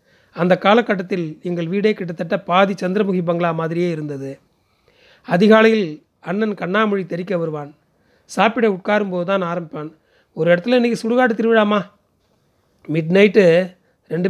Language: Tamil